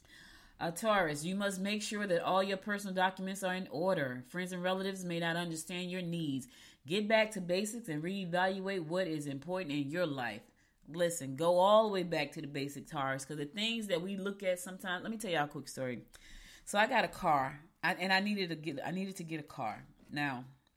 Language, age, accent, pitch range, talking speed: English, 30-49, American, 145-185 Hz, 220 wpm